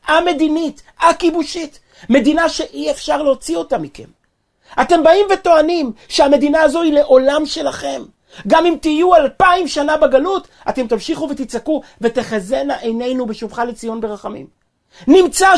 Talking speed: 120 wpm